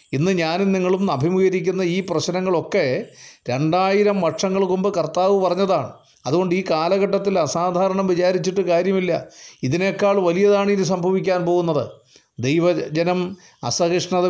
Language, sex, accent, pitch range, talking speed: Malayalam, male, native, 155-195 Hz, 95 wpm